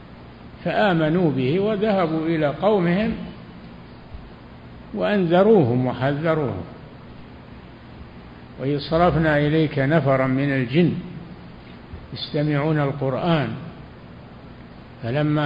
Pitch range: 135-175 Hz